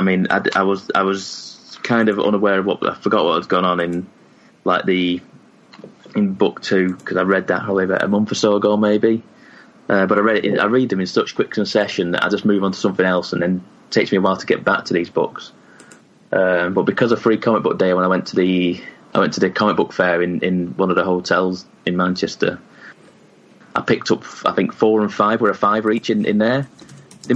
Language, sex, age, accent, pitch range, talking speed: English, male, 20-39, British, 90-100 Hz, 250 wpm